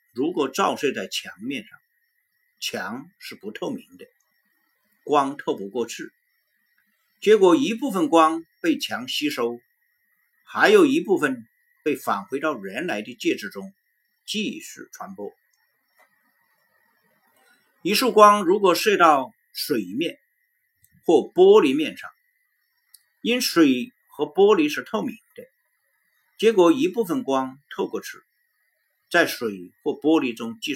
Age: 50-69